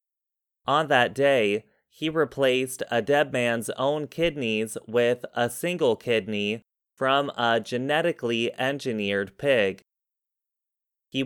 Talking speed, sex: 105 wpm, male